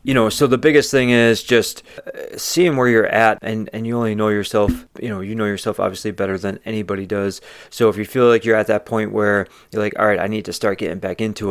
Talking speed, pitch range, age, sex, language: 255 wpm, 105-120 Hz, 30-49, male, English